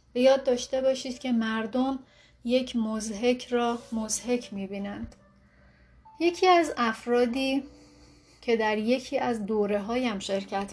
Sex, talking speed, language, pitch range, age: female, 110 wpm, Persian, 205-245 Hz, 30-49